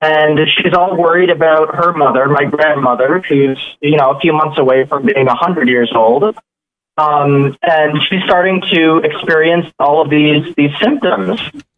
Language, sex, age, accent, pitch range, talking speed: English, male, 20-39, American, 140-165 Hz, 165 wpm